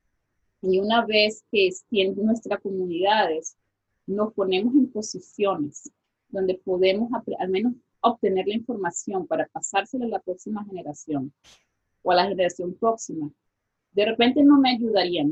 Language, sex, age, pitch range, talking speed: English, female, 30-49, 180-230 Hz, 140 wpm